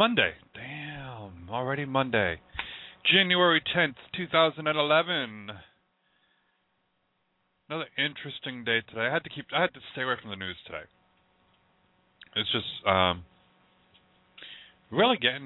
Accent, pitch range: American, 95-125 Hz